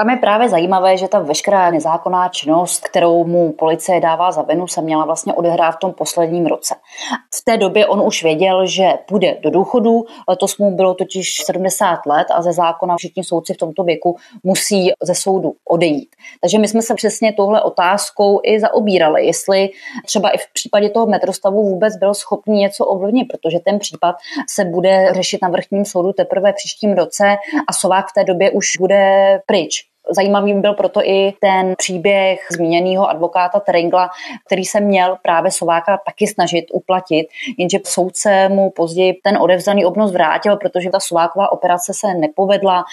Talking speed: 175 wpm